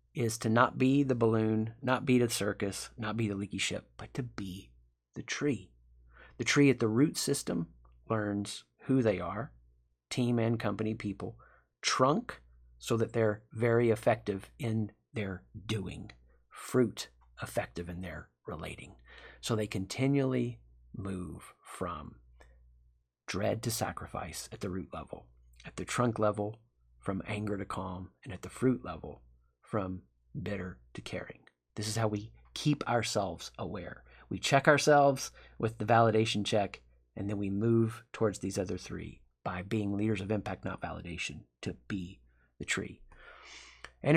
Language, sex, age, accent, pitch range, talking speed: English, male, 40-59, American, 85-115 Hz, 150 wpm